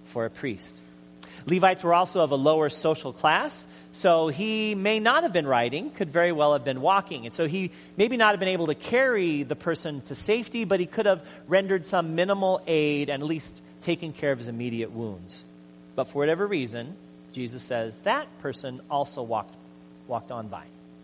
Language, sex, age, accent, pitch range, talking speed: English, male, 30-49, American, 120-200 Hz, 190 wpm